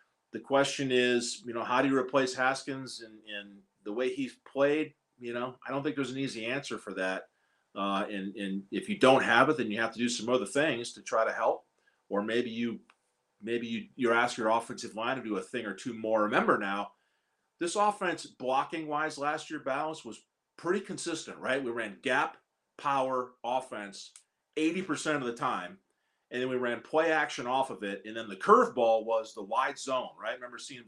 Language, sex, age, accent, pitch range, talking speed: English, male, 40-59, American, 105-135 Hz, 205 wpm